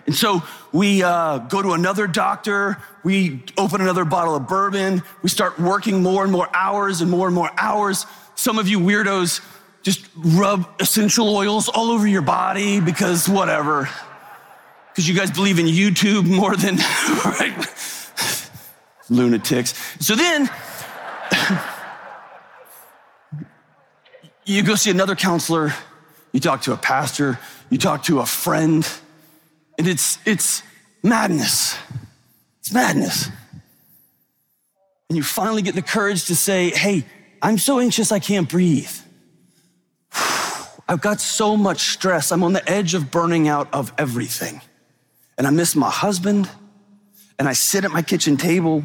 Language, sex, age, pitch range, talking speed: English, male, 30-49, 160-200 Hz, 140 wpm